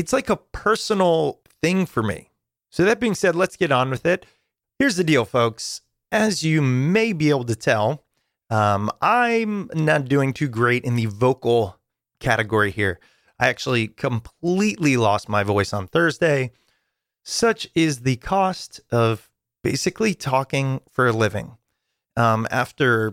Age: 30-49